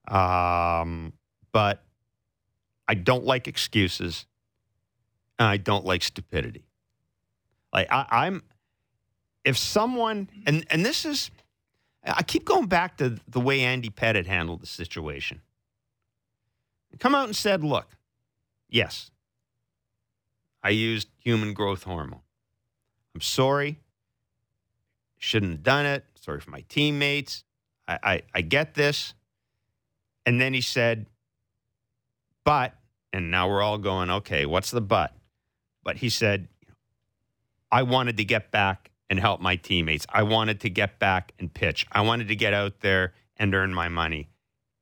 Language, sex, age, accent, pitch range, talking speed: English, male, 40-59, American, 100-125 Hz, 135 wpm